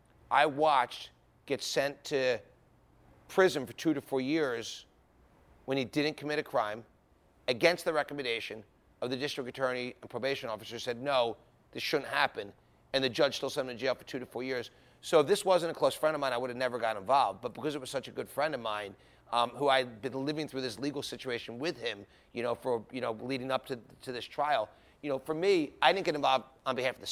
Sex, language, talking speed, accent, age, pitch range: male, English, 230 wpm, American, 30-49, 115-145 Hz